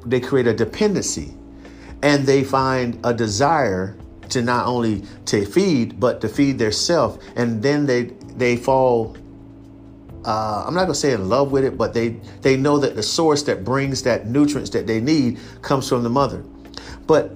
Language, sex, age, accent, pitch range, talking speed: English, male, 50-69, American, 100-135 Hz, 185 wpm